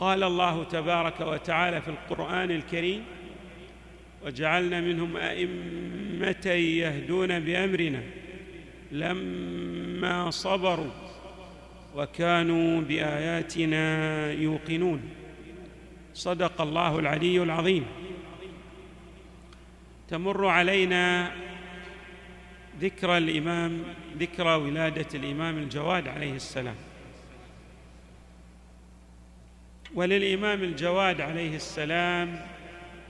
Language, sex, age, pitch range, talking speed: Arabic, male, 50-69, 150-180 Hz, 60 wpm